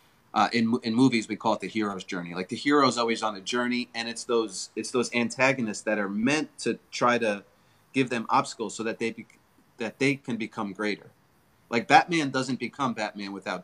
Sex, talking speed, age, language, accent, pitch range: male, 205 wpm, 30-49, English, American, 105-125 Hz